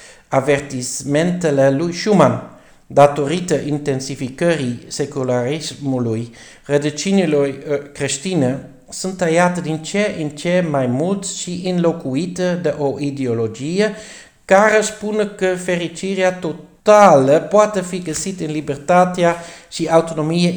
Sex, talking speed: male, 95 wpm